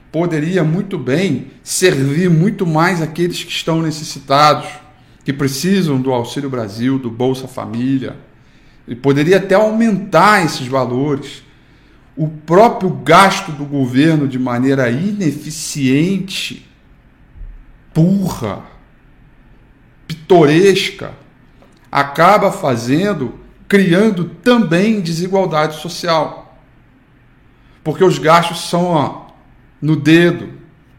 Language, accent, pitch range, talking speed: Portuguese, Brazilian, 130-175 Hz, 90 wpm